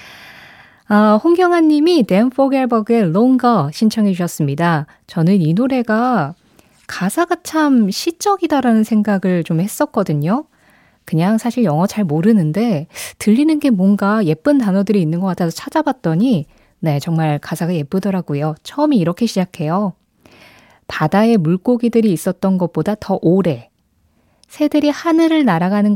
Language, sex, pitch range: Korean, female, 165-235 Hz